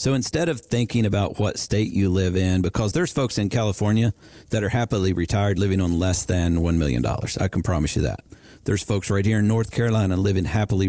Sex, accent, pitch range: male, American, 90-115 Hz